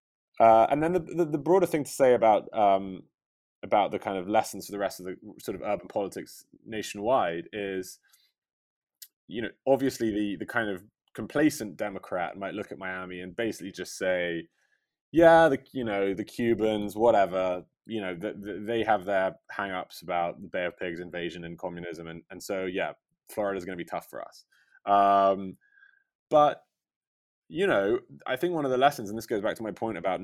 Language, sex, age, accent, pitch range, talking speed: English, male, 20-39, British, 90-115 Hz, 195 wpm